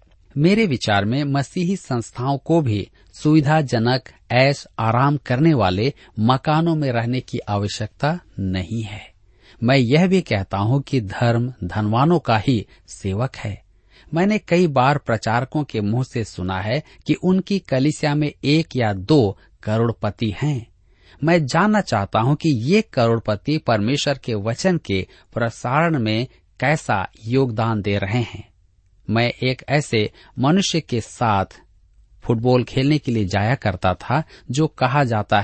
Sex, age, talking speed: male, 40-59, 140 wpm